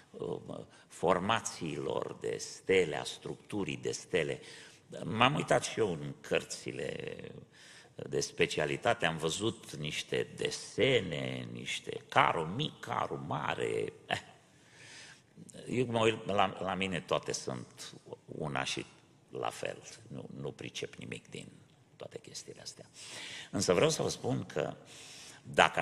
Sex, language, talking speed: male, Romanian, 110 wpm